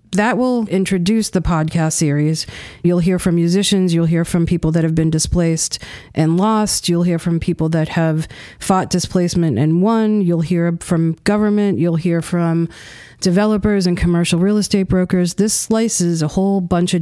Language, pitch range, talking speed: English, 165-185 Hz, 175 wpm